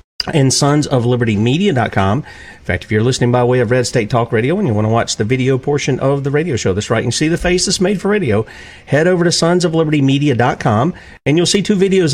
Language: English